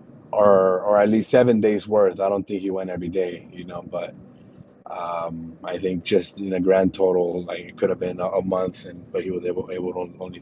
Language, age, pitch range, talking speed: English, 20-39, 85-95 Hz, 235 wpm